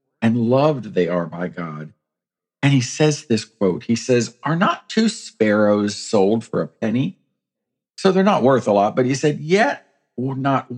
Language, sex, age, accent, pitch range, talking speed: English, male, 50-69, American, 95-135 Hz, 180 wpm